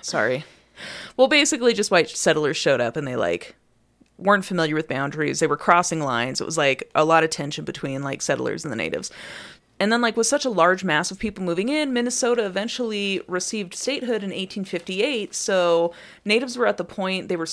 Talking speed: 200 wpm